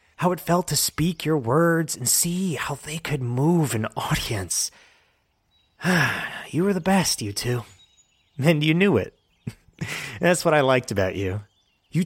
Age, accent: 30-49, American